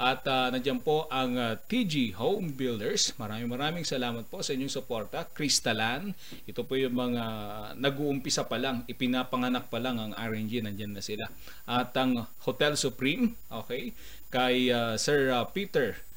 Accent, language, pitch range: native, Filipino, 120-155 Hz